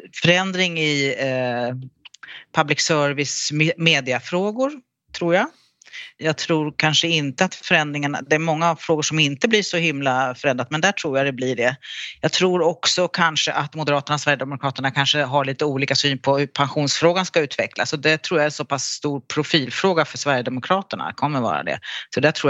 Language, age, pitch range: Swedish, 40-59, 135-170 Hz